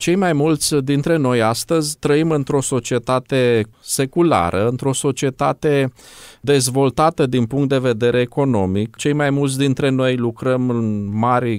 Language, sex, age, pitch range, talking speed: Romanian, male, 20-39, 125-155 Hz, 135 wpm